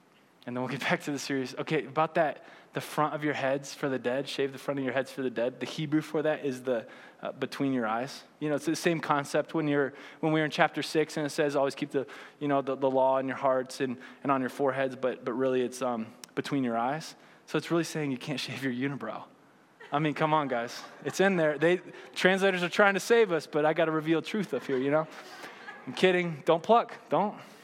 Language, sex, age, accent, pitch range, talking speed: English, male, 20-39, American, 135-170 Hz, 255 wpm